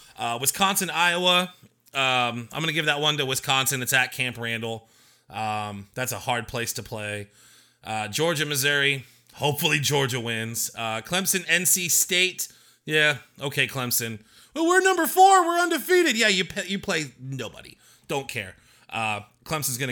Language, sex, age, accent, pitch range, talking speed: English, male, 30-49, American, 115-160 Hz, 155 wpm